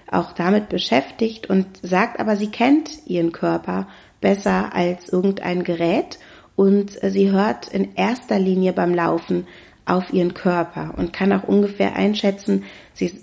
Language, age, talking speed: German, 30-49, 140 wpm